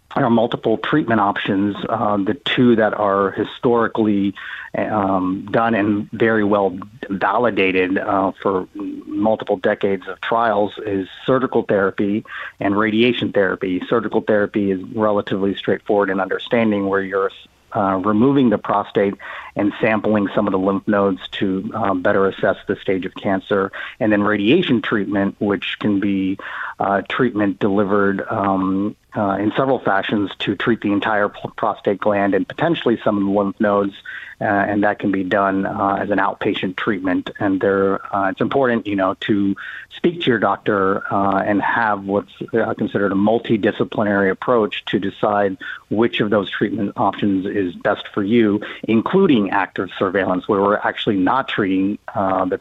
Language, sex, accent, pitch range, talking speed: English, male, American, 100-110 Hz, 155 wpm